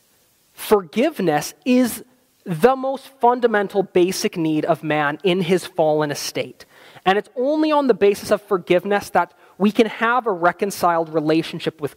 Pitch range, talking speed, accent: 175-230 Hz, 145 wpm, American